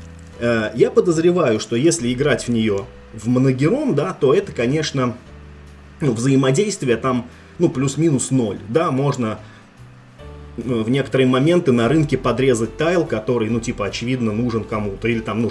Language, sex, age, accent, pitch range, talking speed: Russian, male, 20-39, native, 105-130 Hz, 145 wpm